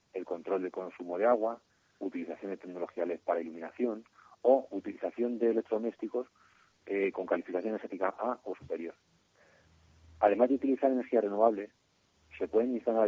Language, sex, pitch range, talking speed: Spanish, male, 100-125 Hz, 140 wpm